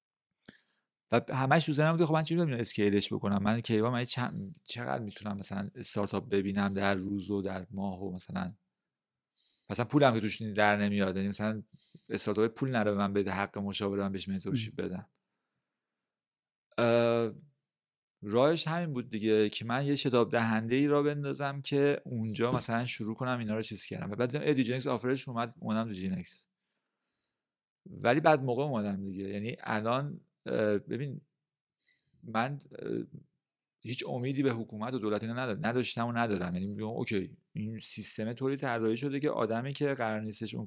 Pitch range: 105-140 Hz